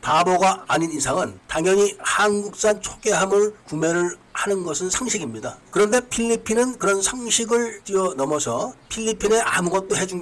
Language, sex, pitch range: Korean, male, 150-200 Hz